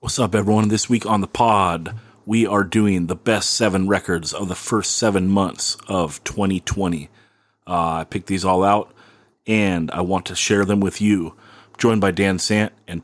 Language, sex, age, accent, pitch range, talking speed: English, male, 30-49, American, 95-115 Hz, 195 wpm